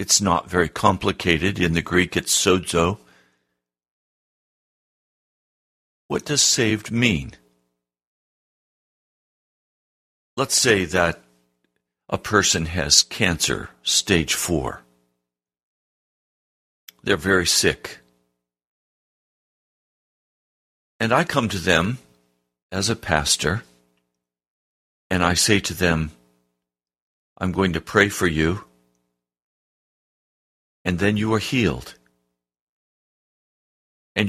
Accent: American